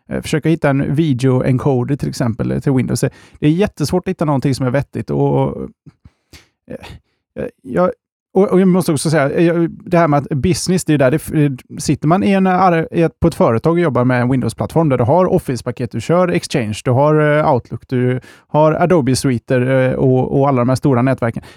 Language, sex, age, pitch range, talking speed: Swedish, male, 20-39, 125-165 Hz, 185 wpm